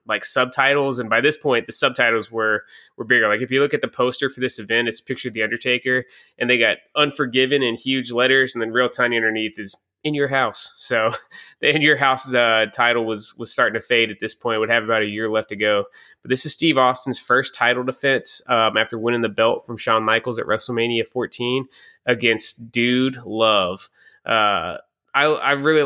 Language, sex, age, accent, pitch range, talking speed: English, male, 20-39, American, 110-130 Hz, 210 wpm